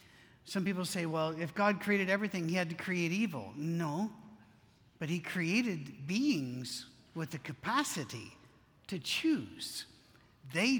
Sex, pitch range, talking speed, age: male, 155-195 Hz, 135 wpm, 50-69